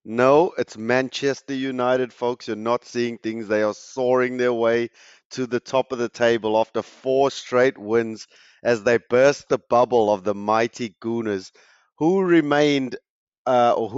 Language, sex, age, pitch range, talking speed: English, male, 30-49, 105-125 Hz, 155 wpm